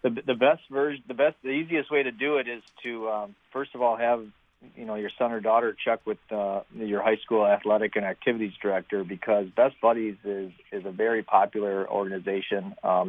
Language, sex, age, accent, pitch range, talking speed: English, male, 40-59, American, 100-115 Hz, 205 wpm